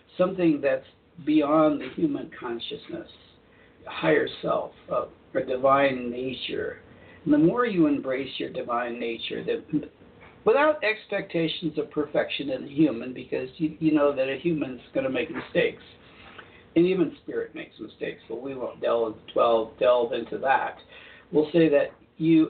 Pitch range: 145-210 Hz